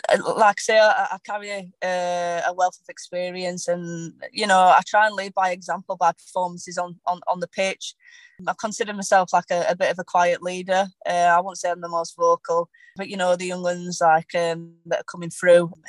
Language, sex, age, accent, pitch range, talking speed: English, female, 20-39, British, 170-190 Hz, 215 wpm